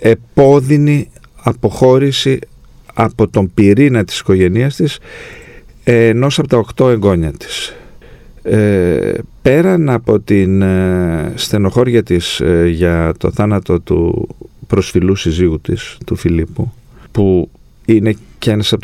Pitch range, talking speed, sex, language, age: 95-115 Hz, 115 wpm, male, Greek, 40-59